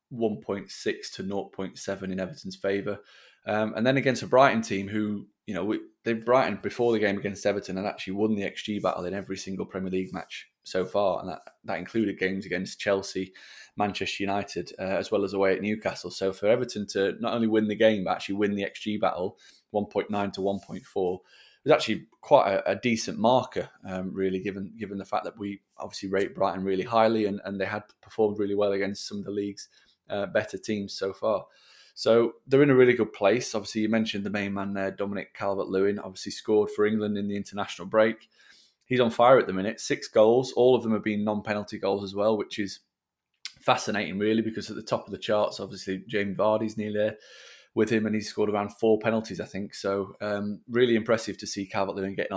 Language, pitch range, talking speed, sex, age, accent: English, 95-110 Hz, 210 wpm, male, 20-39, British